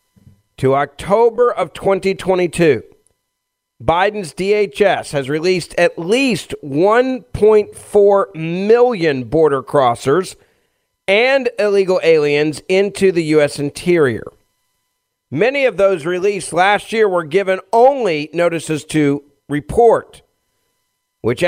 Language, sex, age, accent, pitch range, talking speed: English, male, 40-59, American, 145-195 Hz, 95 wpm